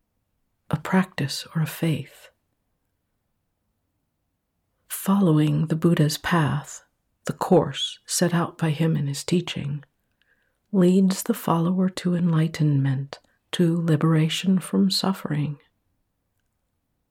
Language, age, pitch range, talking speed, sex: English, 60-79, 140-180 Hz, 95 wpm, female